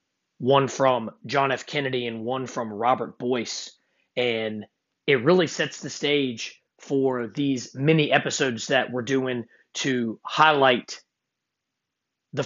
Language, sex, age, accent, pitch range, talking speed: English, male, 30-49, American, 130-150 Hz, 125 wpm